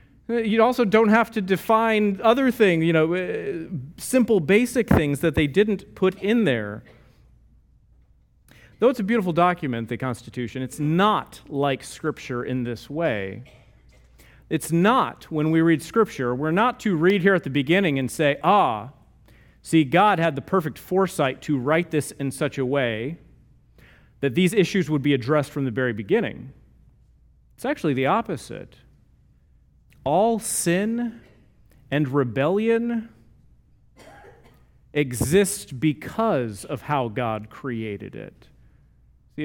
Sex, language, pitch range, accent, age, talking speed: male, English, 130-185 Hz, American, 40-59, 135 wpm